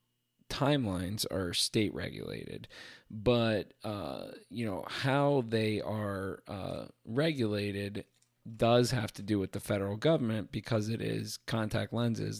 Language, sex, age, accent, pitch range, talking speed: English, male, 20-39, American, 105-120 Hz, 125 wpm